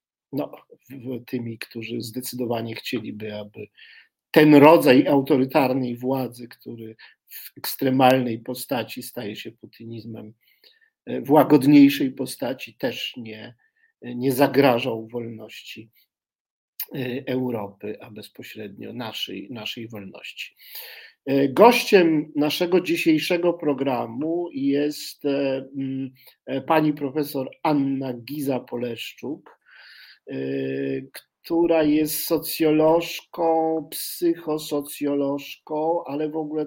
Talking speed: 75 wpm